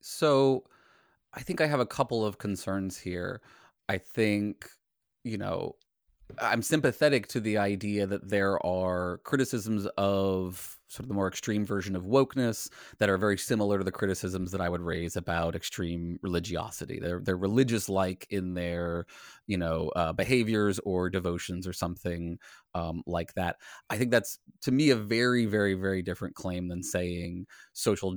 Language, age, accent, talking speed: English, 30-49, American, 160 wpm